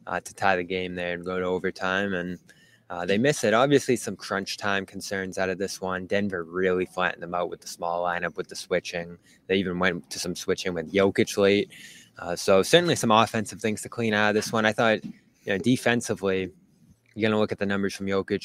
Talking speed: 230 wpm